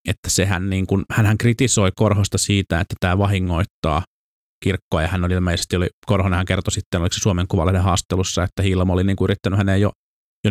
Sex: male